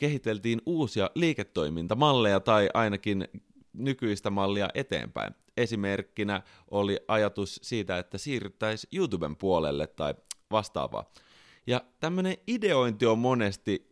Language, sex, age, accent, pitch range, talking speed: Finnish, male, 30-49, native, 90-115 Hz, 100 wpm